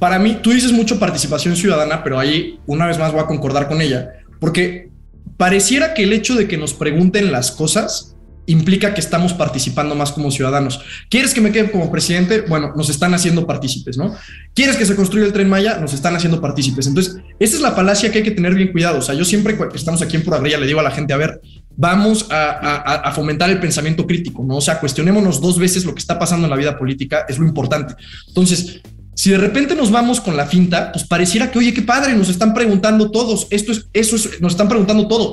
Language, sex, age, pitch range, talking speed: Spanish, male, 20-39, 150-210 Hz, 235 wpm